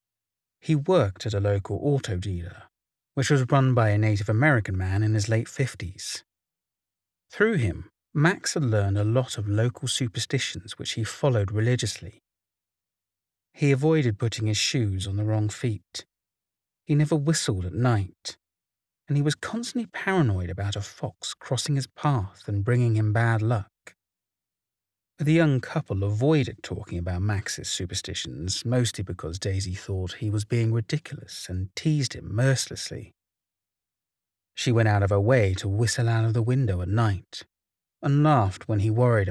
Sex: male